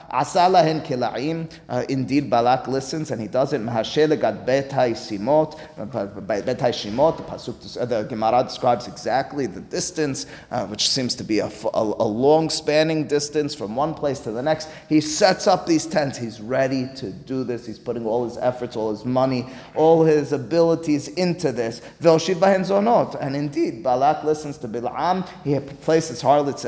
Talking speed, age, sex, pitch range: 140 wpm, 30-49, male, 120-165 Hz